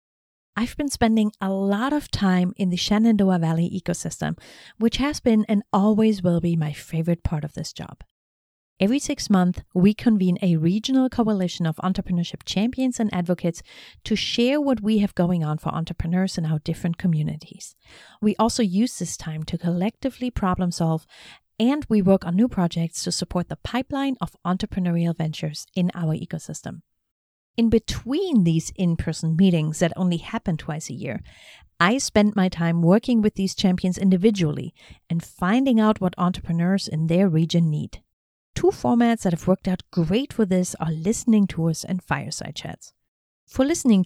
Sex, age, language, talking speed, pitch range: female, 40-59, English, 165 wpm, 170-220 Hz